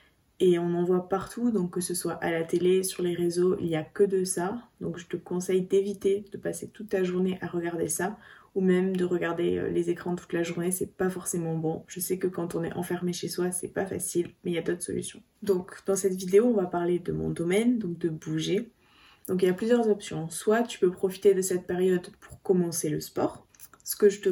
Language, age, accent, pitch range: French, 20-39, French, 175-195 Hz